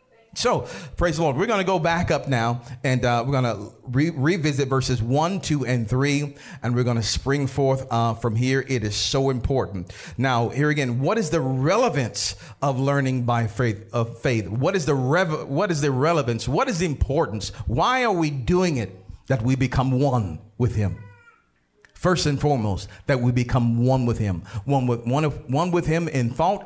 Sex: male